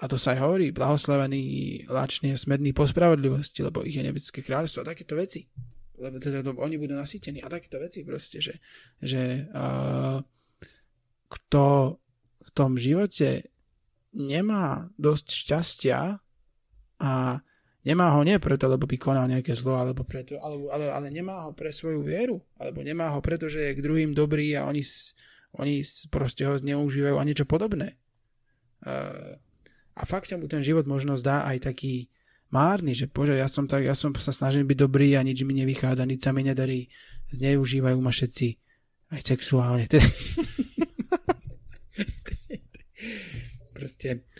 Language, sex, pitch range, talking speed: Slovak, male, 130-155 Hz, 150 wpm